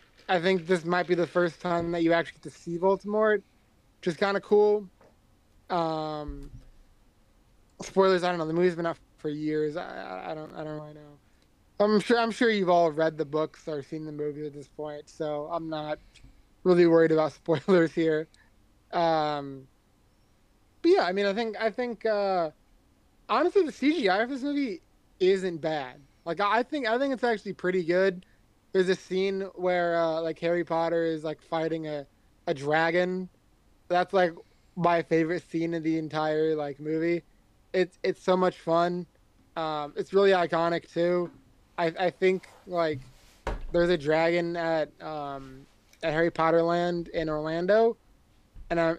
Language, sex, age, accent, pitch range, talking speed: English, male, 20-39, American, 150-185 Hz, 170 wpm